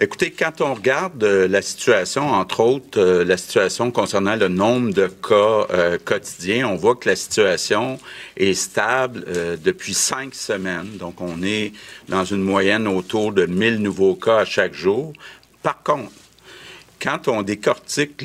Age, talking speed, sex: 50-69, 160 wpm, male